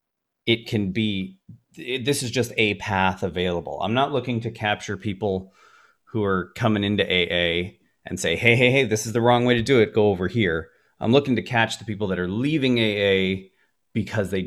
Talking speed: 205 wpm